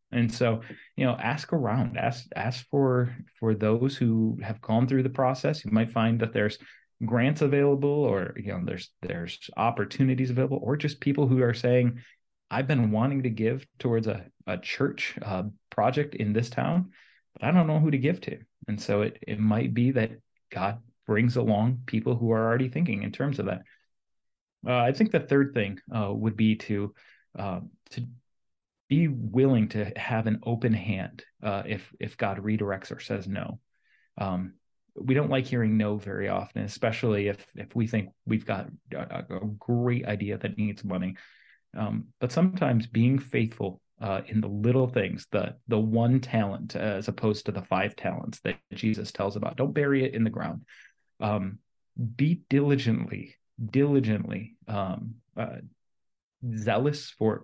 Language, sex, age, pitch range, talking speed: English, male, 30-49, 105-130 Hz, 170 wpm